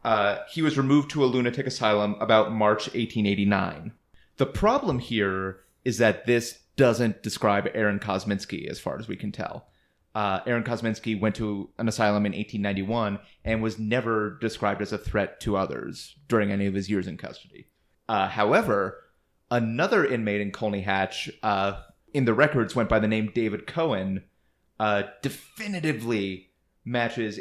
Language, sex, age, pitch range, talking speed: English, male, 30-49, 100-120 Hz, 160 wpm